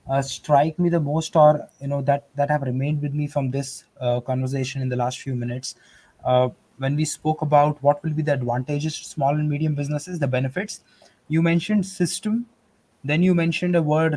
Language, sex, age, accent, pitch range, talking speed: English, male, 20-39, Indian, 150-200 Hz, 205 wpm